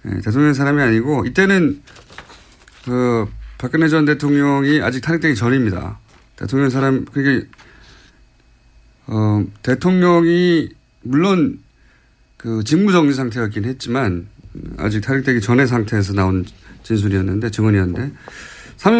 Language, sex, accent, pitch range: Korean, male, native, 110-165 Hz